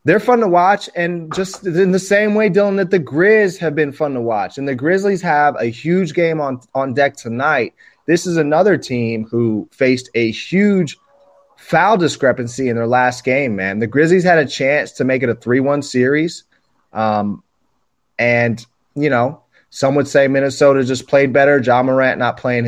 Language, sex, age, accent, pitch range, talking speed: English, male, 30-49, American, 125-185 Hz, 190 wpm